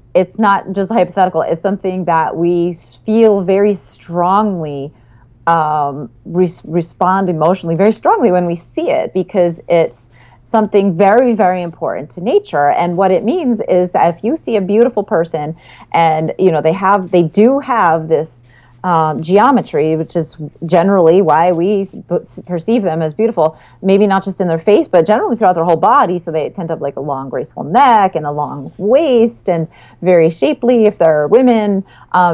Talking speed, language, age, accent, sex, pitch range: 175 wpm, English, 30-49, American, female, 160-200 Hz